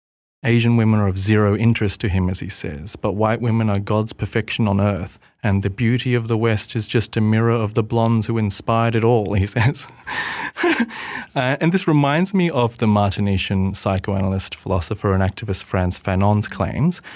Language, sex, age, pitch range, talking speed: English, male, 30-49, 100-115 Hz, 185 wpm